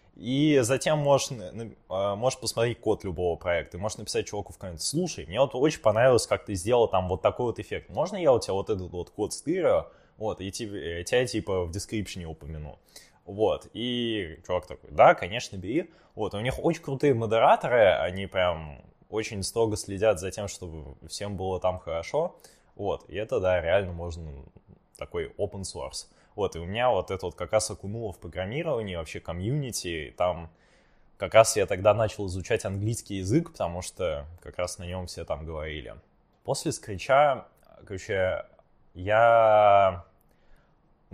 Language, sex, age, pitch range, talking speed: Russian, male, 20-39, 90-115 Hz, 170 wpm